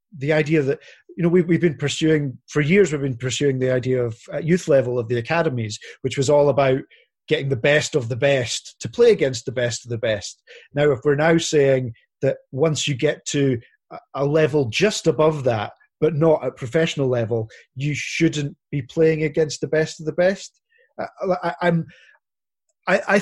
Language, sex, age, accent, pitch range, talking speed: English, male, 30-49, British, 135-160 Hz, 185 wpm